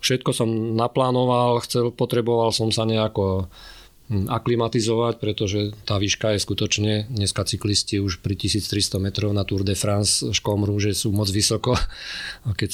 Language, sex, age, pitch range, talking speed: Slovak, male, 40-59, 100-110 Hz, 140 wpm